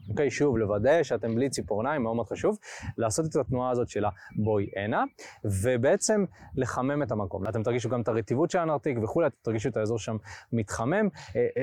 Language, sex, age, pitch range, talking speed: Hebrew, male, 20-39, 115-145 Hz, 180 wpm